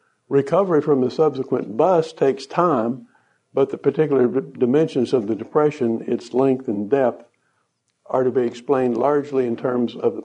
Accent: American